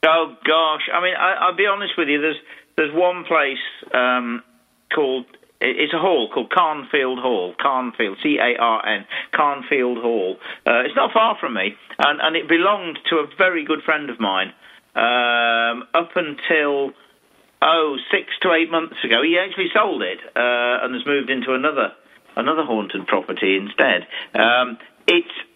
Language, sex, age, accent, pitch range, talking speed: English, male, 50-69, British, 135-180 Hz, 160 wpm